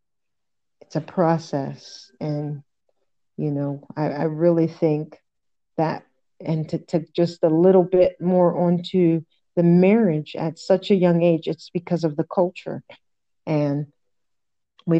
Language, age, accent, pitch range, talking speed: English, 40-59, American, 150-170 Hz, 135 wpm